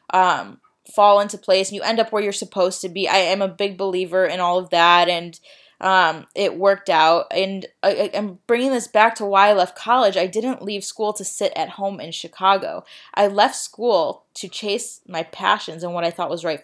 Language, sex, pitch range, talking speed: English, female, 175-205 Hz, 215 wpm